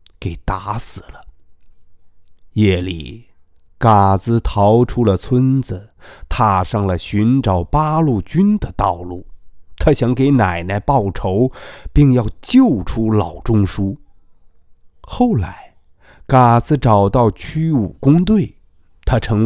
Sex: male